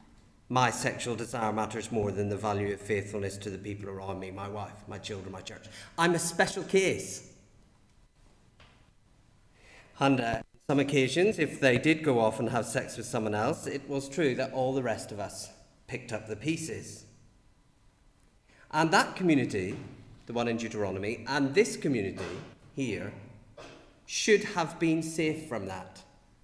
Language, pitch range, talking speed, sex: English, 105-145 Hz, 160 wpm, male